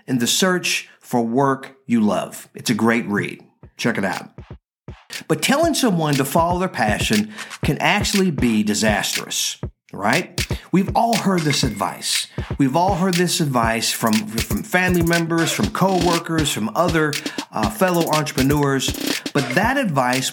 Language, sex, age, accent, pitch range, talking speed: English, male, 50-69, American, 145-220 Hz, 150 wpm